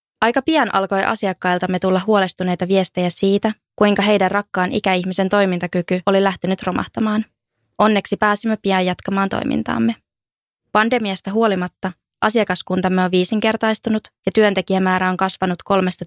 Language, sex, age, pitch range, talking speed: English, female, 20-39, 185-215 Hz, 115 wpm